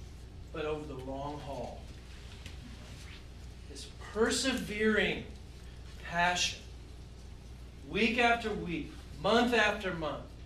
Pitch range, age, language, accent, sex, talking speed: 150-245 Hz, 40-59, English, American, male, 80 wpm